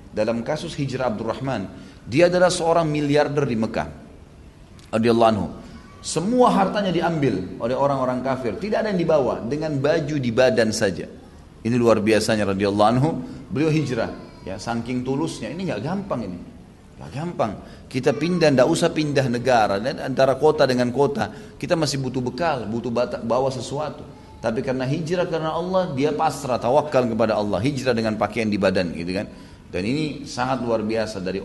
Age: 30-49